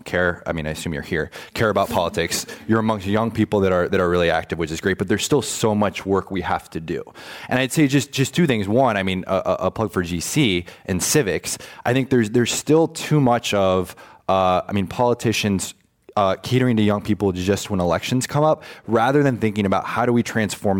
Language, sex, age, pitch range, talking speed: English, male, 20-39, 95-125 Hz, 230 wpm